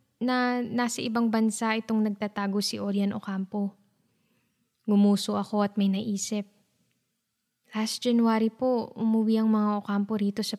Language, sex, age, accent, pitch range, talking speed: English, female, 20-39, Filipino, 205-240 Hz, 130 wpm